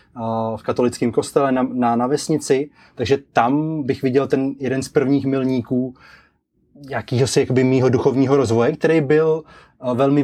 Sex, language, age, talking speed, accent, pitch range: male, Czech, 20-39, 135 wpm, native, 120-145 Hz